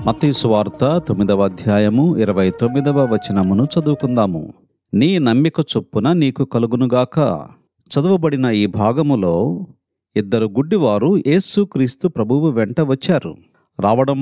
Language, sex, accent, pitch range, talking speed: Telugu, male, native, 120-165 Hz, 100 wpm